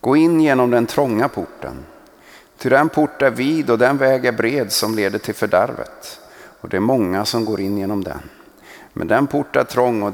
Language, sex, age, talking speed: Swedish, male, 50-69, 205 wpm